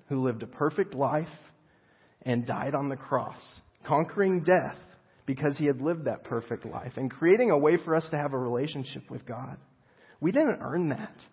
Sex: male